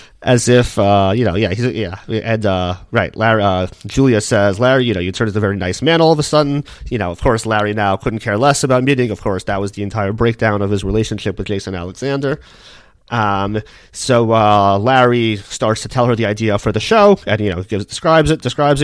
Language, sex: English, male